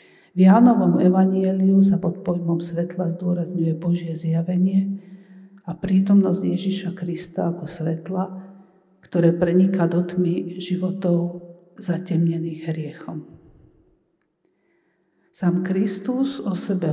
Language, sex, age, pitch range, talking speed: Slovak, female, 50-69, 170-195 Hz, 95 wpm